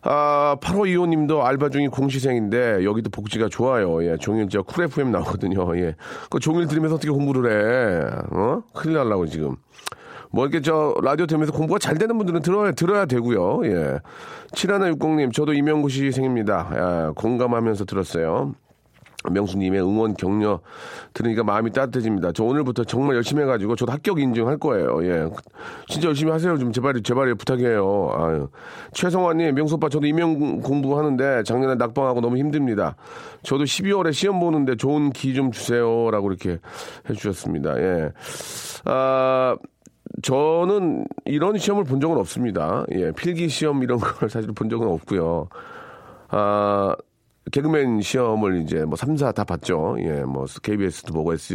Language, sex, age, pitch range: Korean, male, 40-59, 105-150 Hz